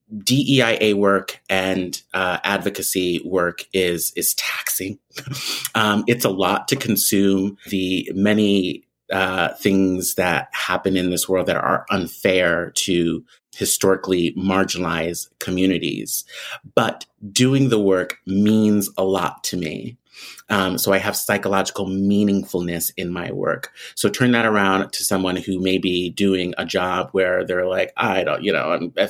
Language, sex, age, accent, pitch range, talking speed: English, male, 30-49, American, 95-115 Hz, 140 wpm